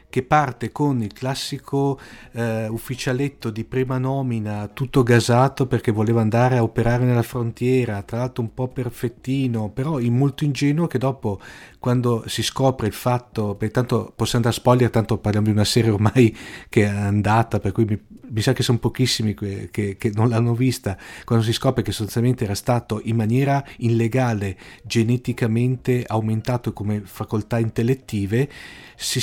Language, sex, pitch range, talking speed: Italian, male, 110-130 Hz, 165 wpm